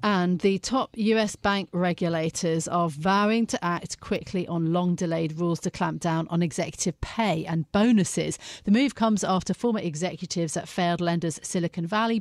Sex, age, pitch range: female, 40-59, 170-210 Hz